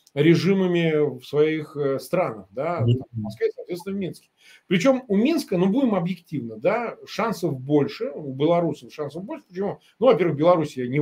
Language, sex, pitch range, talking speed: Russian, male, 135-185 Hz, 140 wpm